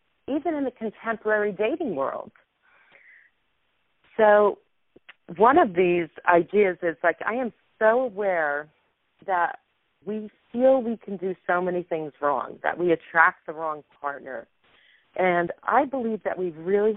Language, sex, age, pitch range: English, female, 40-59, 165-215 Hz